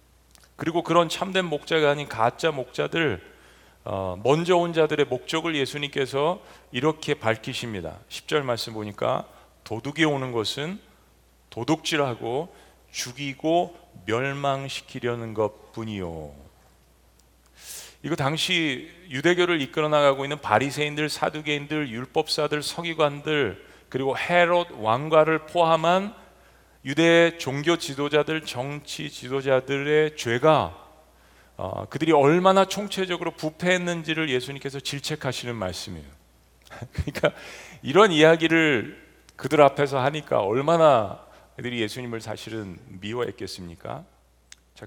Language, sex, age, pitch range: Korean, male, 40-59, 110-155 Hz